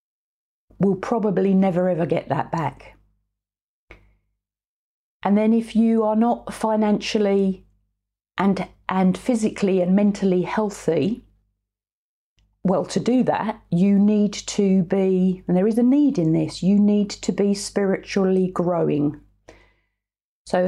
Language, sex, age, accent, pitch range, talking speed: English, female, 40-59, British, 155-200 Hz, 120 wpm